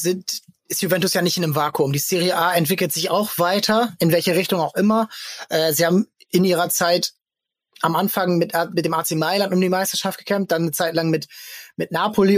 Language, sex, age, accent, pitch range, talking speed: German, male, 20-39, German, 170-205 Hz, 215 wpm